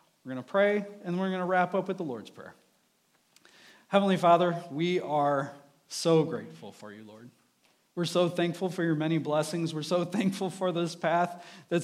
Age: 40-59